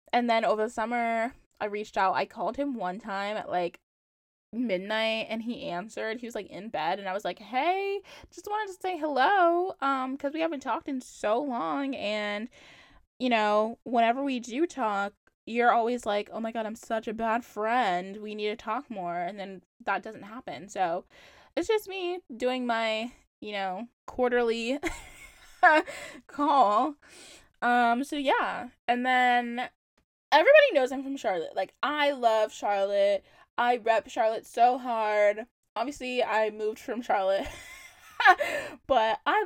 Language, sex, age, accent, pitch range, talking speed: English, female, 10-29, American, 215-295 Hz, 160 wpm